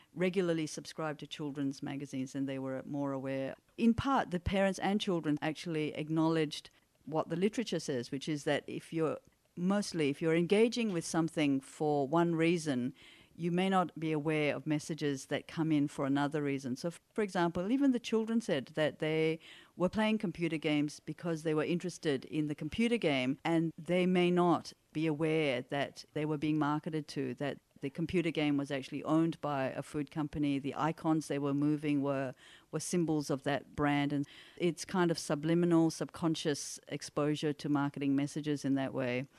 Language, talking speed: English, 180 wpm